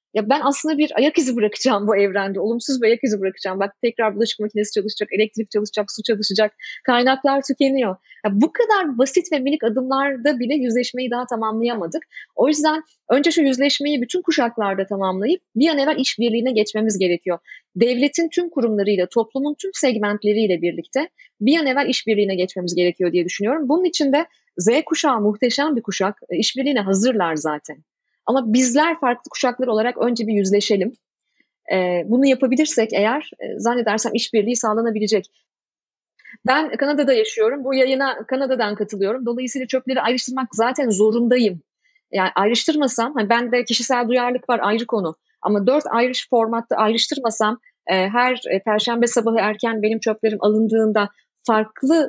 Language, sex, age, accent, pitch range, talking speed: Turkish, female, 30-49, native, 215-275 Hz, 145 wpm